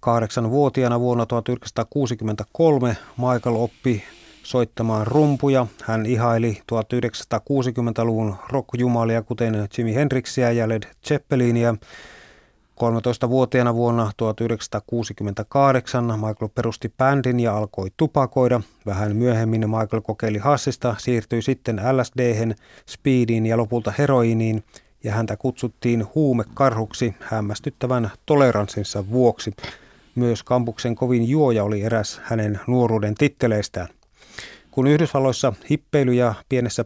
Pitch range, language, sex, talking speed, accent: 110-130 Hz, Finnish, male, 95 wpm, native